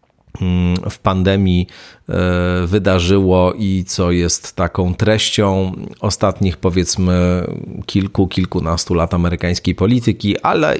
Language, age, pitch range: Polish, 40-59, 95-115 Hz